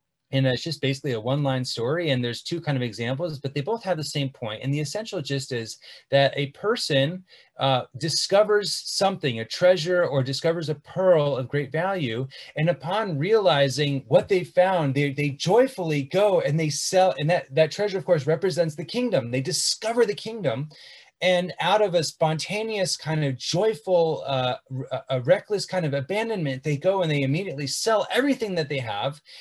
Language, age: English, 30-49